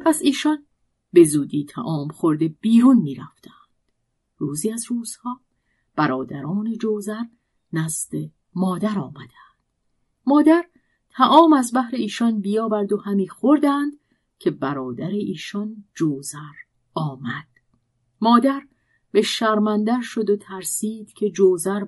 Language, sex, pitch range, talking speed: Persian, female, 165-250 Hz, 110 wpm